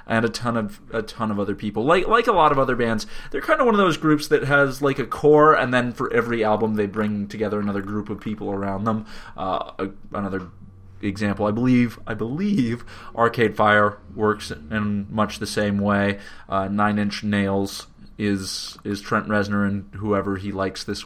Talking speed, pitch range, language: 200 wpm, 105-140 Hz, English